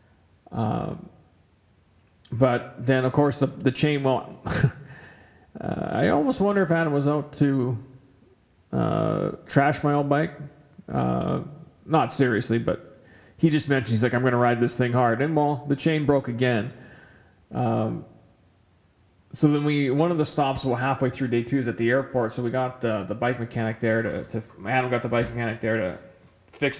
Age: 40-59